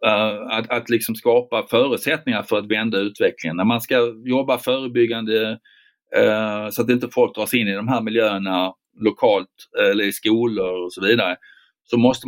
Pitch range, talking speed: 105-150 Hz, 175 wpm